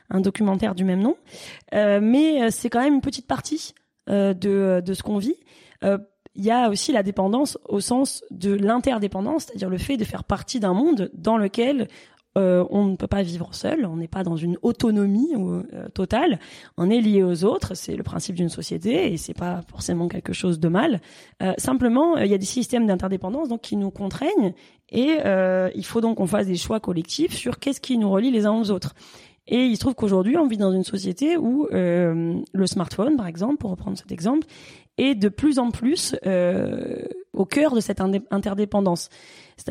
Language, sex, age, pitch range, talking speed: French, female, 20-39, 190-250 Hz, 210 wpm